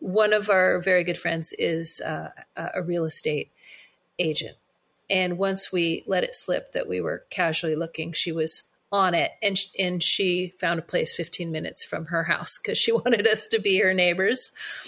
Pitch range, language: 170-200 Hz, English